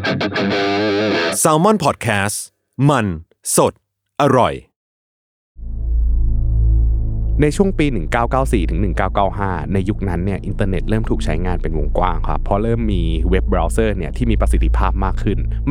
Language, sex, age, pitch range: Thai, male, 20-39, 90-115 Hz